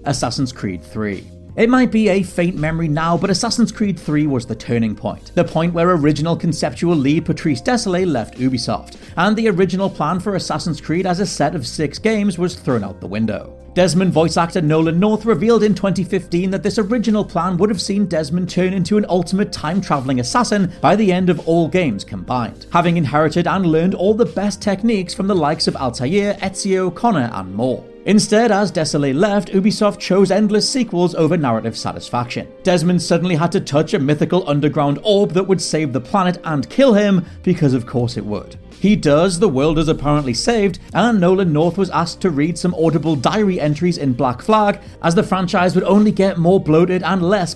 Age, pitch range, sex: 40-59, 150-200 Hz, male